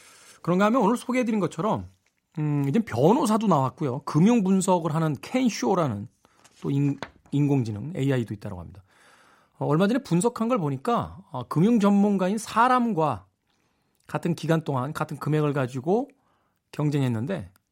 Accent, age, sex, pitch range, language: native, 40-59, male, 125-190 Hz, Korean